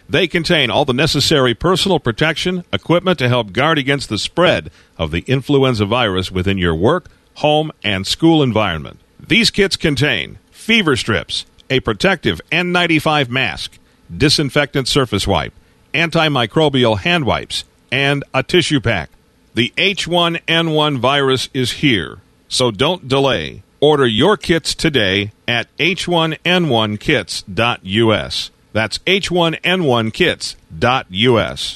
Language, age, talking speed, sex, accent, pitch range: English, 50-69, 115 wpm, male, American, 105-165 Hz